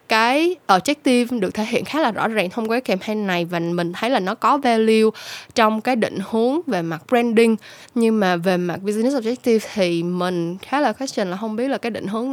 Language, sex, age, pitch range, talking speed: Vietnamese, female, 10-29, 190-245 Hz, 225 wpm